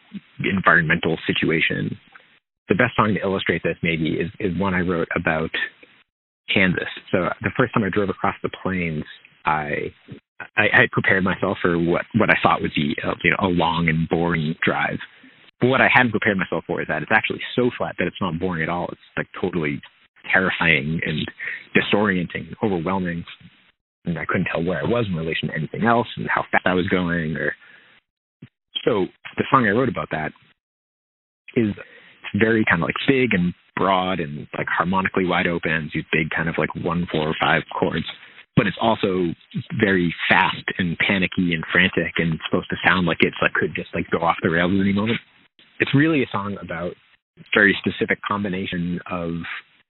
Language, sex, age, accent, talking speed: English, male, 30-49, American, 185 wpm